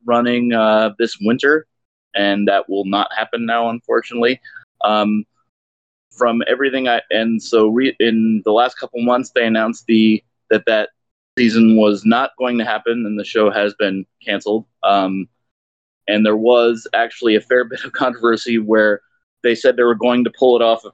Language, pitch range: English, 105-120 Hz